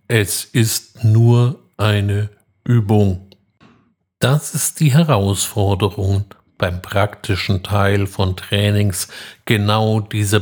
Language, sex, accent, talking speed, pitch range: German, male, German, 90 wpm, 100-125 Hz